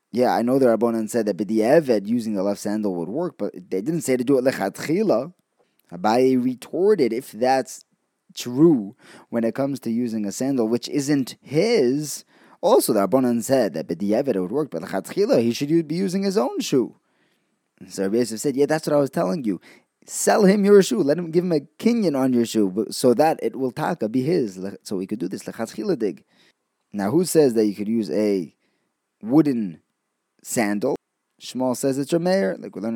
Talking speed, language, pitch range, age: 190 wpm, English, 105-140 Hz, 20-39